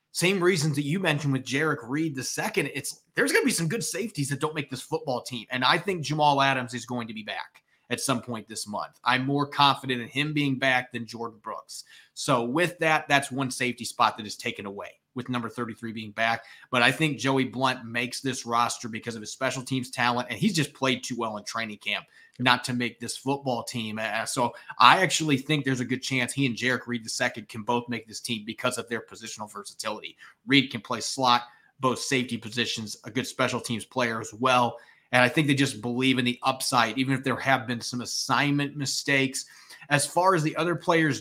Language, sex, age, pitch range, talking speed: English, male, 30-49, 120-145 Hz, 225 wpm